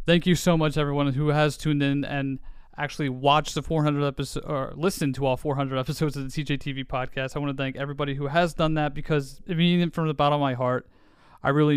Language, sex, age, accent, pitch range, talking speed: English, male, 30-49, American, 135-165 Hz, 230 wpm